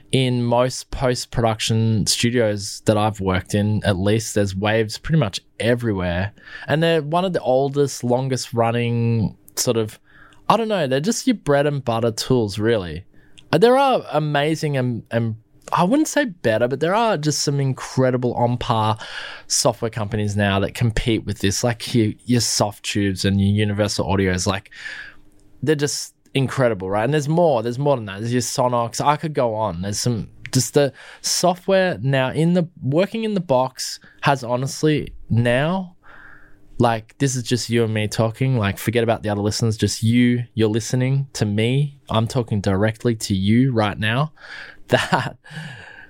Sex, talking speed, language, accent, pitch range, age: male, 165 wpm, English, Australian, 110-140 Hz, 20-39